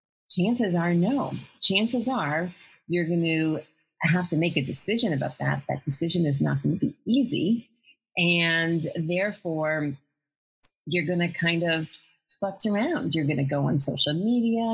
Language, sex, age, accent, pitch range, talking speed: English, female, 30-49, American, 145-185 Hz, 160 wpm